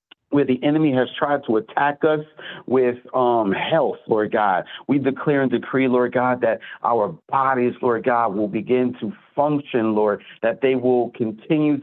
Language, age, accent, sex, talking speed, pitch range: English, 40-59, American, male, 165 wpm, 120-145 Hz